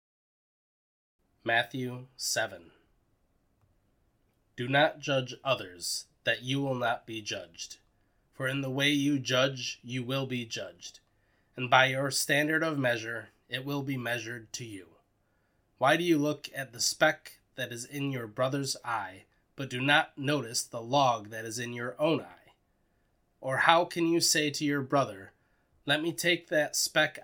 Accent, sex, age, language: American, male, 20-39, English